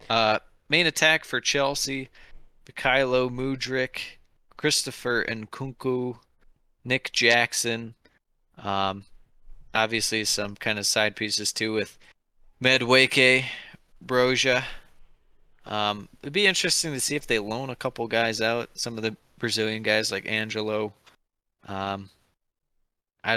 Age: 20-39